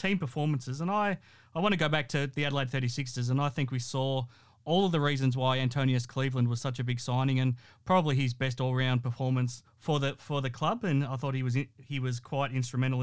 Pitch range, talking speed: 125-150 Hz, 235 wpm